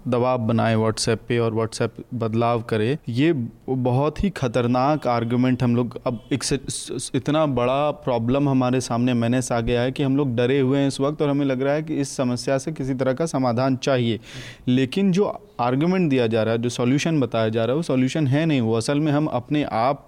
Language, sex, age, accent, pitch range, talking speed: Hindi, male, 30-49, native, 125-150 Hz, 205 wpm